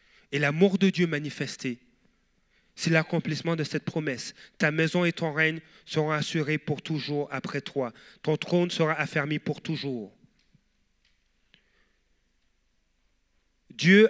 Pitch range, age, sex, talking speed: 150-190 Hz, 40-59, male, 120 wpm